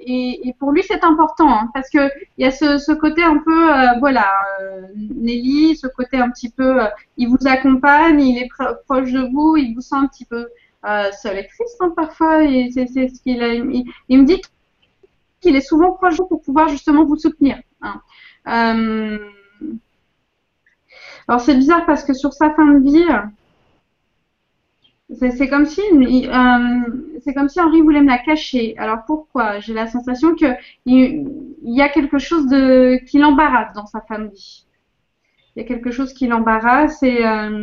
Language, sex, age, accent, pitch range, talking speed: French, female, 30-49, French, 230-295 Hz, 190 wpm